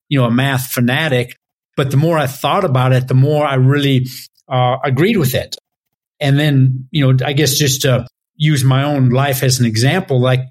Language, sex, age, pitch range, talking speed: English, male, 50-69, 125-145 Hz, 205 wpm